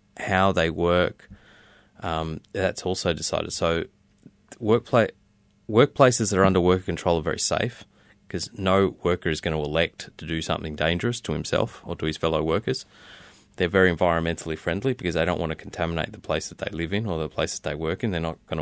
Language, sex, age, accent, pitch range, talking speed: English, male, 20-39, Australian, 85-100 Hz, 200 wpm